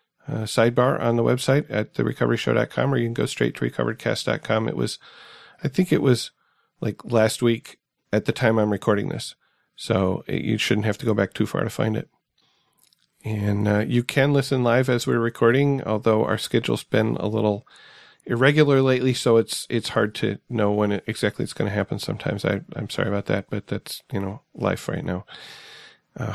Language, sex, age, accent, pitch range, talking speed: English, male, 40-59, American, 105-130 Hz, 195 wpm